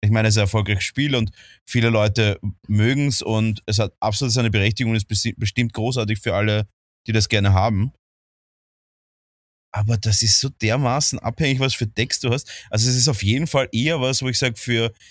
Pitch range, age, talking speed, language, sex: 105-125 Hz, 20-39, 205 wpm, German, male